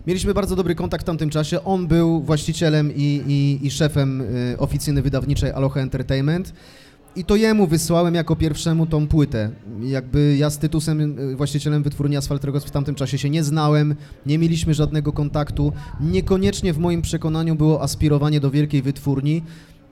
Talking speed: 155 wpm